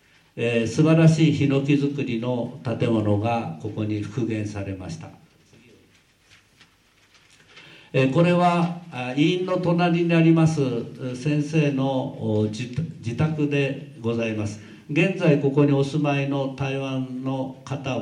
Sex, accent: male, native